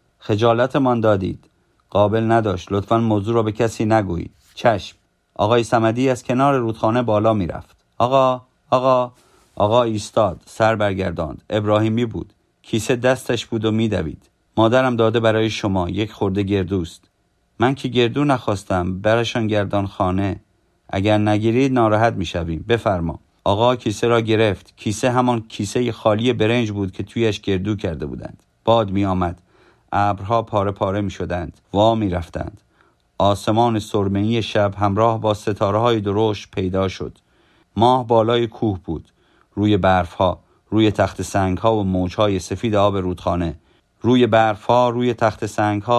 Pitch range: 95-115 Hz